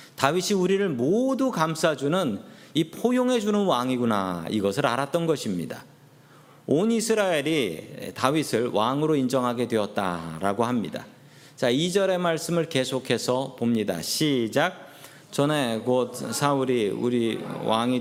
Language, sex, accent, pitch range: Korean, male, native, 120-165 Hz